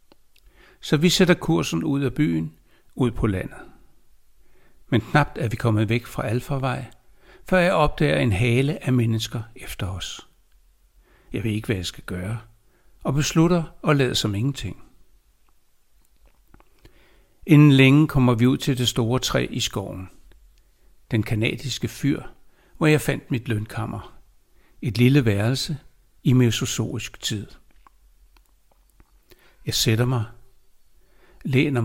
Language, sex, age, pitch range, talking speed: Danish, male, 60-79, 110-140 Hz, 130 wpm